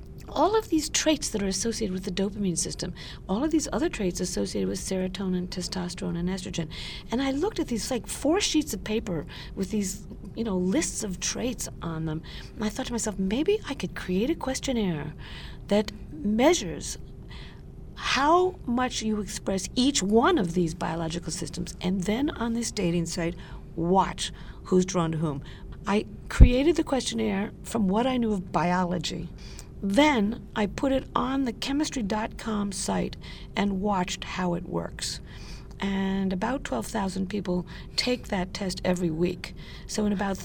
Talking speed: 165 wpm